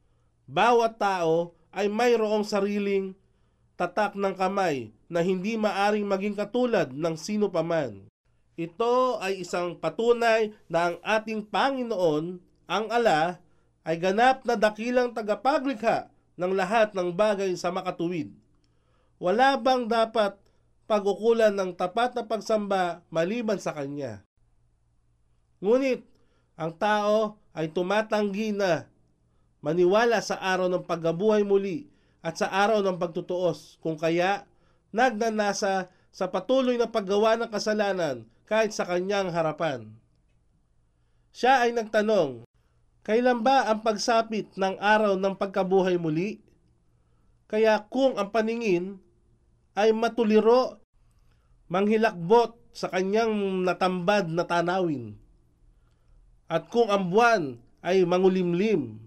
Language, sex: Filipino, male